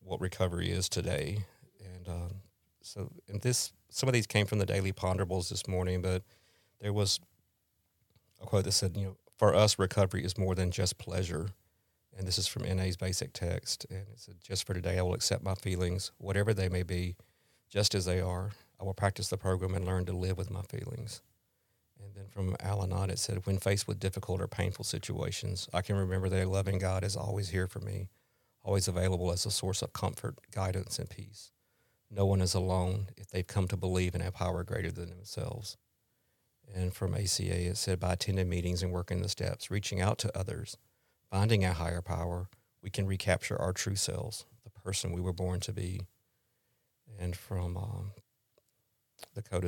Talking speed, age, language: 195 wpm, 40-59, English